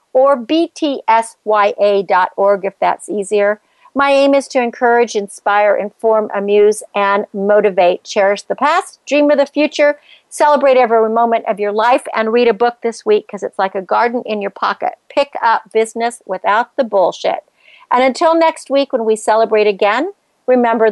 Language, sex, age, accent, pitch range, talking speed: English, female, 50-69, American, 200-280 Hz, 165 wpm